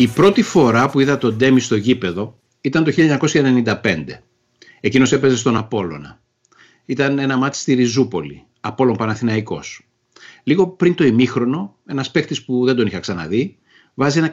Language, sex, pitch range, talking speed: Greek, male, 110-140 Hz, 150 wpm